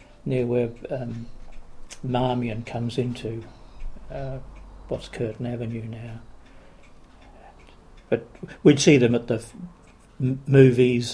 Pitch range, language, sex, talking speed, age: 115-135 Hz, English, male, 95 wpm, 60-79